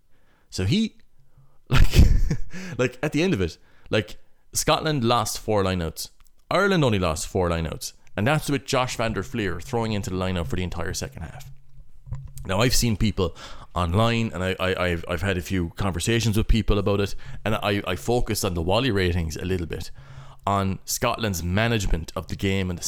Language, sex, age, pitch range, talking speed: English, male, 30-49, 90-120 Hz, 190 wpm